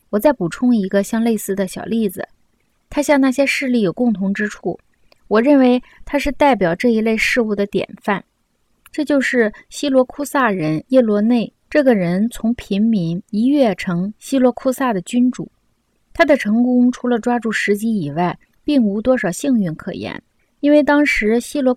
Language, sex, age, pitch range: Chinese, female, 20-39, 185-250 Hz